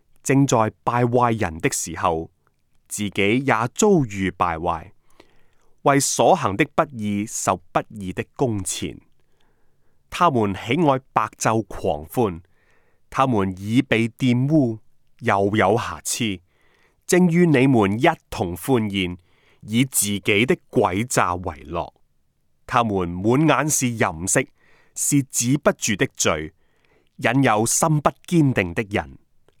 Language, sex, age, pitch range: Chinese, male, 30-49, 100-140 Hz